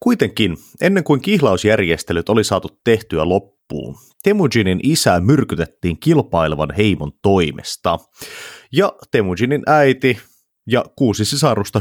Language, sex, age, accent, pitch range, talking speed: Finnish, male, 30-49, native, 90-130 Hz, 100 wpm